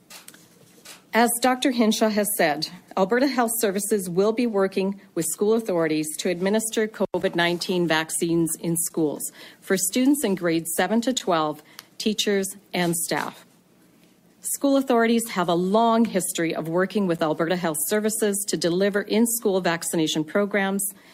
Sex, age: female, 40-59